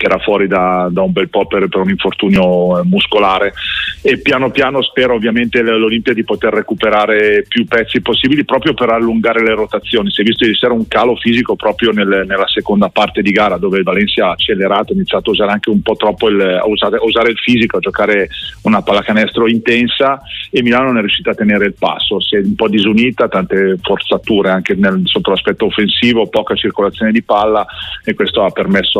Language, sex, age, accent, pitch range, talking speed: Italian, male, 40-59, native, 100-120 Hz, 205 wpm